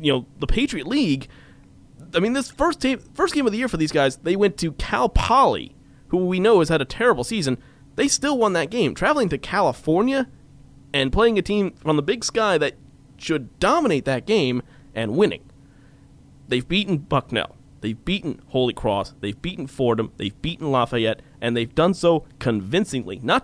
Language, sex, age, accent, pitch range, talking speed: English, male, 30-49, American, 135-195 Hz, 185 wpm